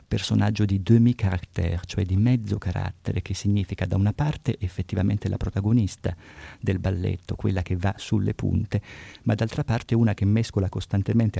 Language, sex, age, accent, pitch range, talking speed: Italian, male, 50-69, native, 90-110 Hz, 160 wpm